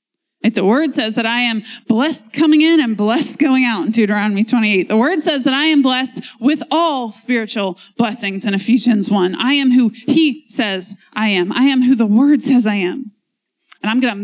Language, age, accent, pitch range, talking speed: English, 30-49, American, 205-255 Hz, 205 wpm